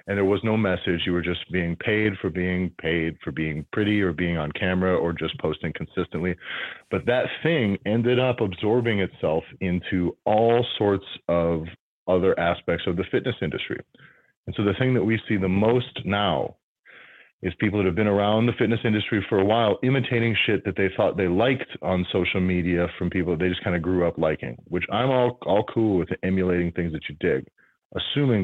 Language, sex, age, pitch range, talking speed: English, male, 30-49, 90-110 Hz, 200 wpm